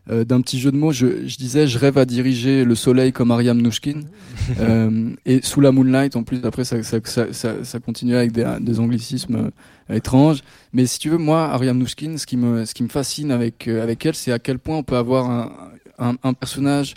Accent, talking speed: French, 235 wpm